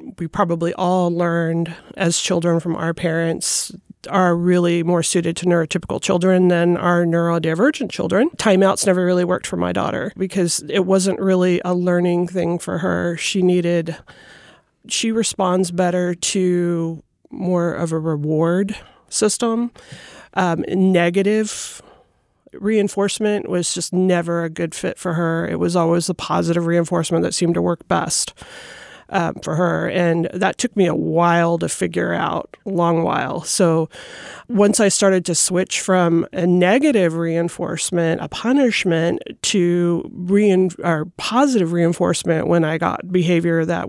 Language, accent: English, American